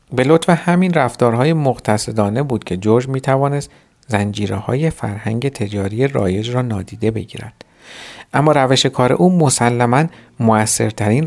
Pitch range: 105-145 Hz